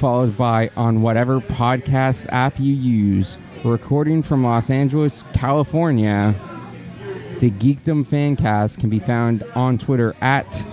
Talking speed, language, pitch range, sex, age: 130 wpm, English, 115-145 Hz, male, 30-49